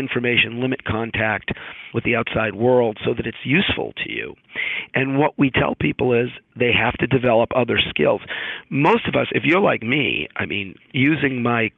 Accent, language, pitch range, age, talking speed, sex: American, English, 110-140 Hz, 50-69, 185 wpm, male